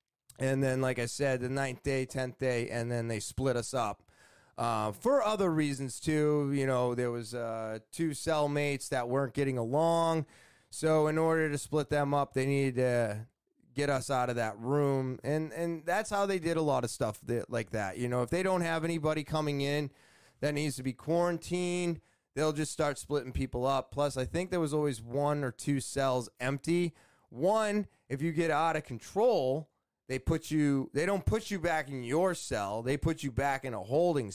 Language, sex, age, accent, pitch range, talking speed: English, male, 20-39, American, 125-155 Hz, 205 wpm